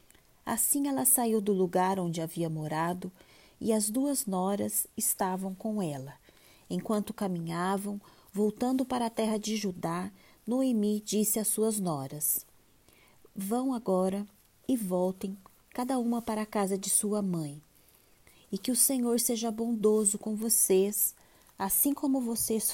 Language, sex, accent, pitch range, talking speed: Portuguese, female, Brazilian, 185-225 Hz, 135 wpm